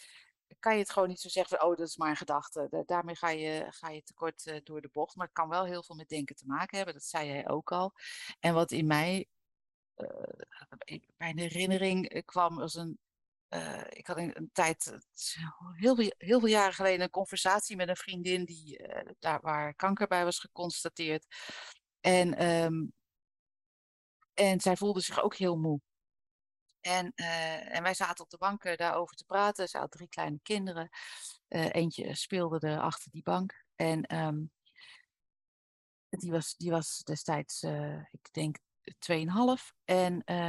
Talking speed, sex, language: 170 wpm, female, Dutch